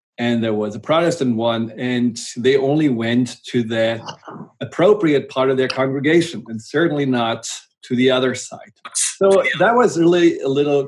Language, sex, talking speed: English, male, 165 wpm